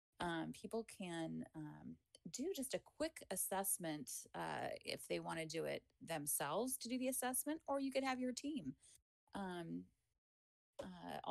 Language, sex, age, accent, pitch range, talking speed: English, female, 30-49, American, 155-195 Hz, 155 wpm